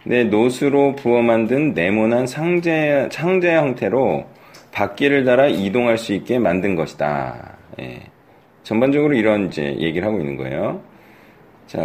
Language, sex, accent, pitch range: Korean, male, native, 110-155 Hz